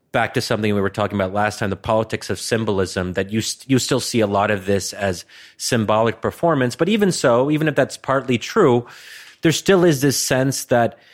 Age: 30-49